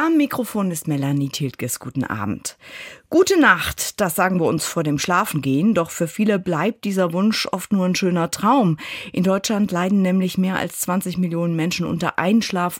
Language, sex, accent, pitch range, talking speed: German, female, German, 155-195 Hz, 180 wpm